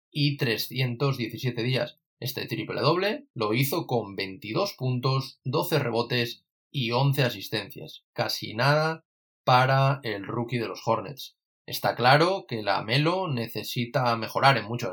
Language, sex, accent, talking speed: Spanish, male, Spanish, 135 wpm